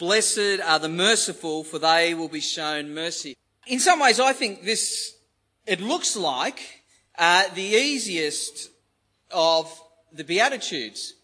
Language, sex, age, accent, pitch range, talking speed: English, male, 40-59, Australian, 170-240 Hz, 135 wpm